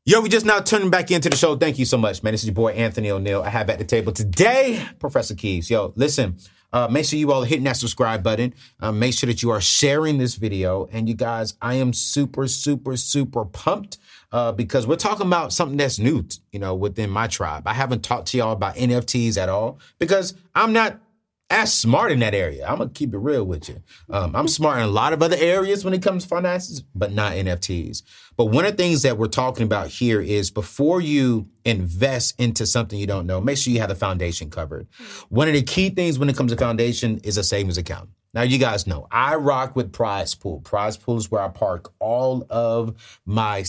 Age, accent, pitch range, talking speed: 30-49, American, 100-135 Hz, 235 wpm